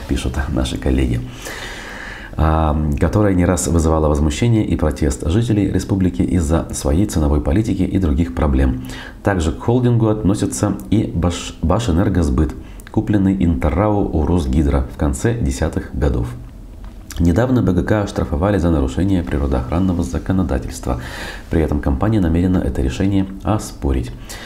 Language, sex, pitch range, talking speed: Russian, male, 75-95 Hz, 115 wpm